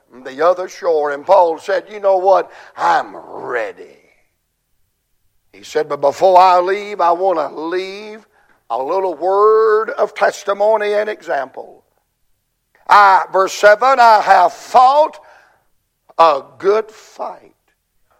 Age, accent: 60-79, American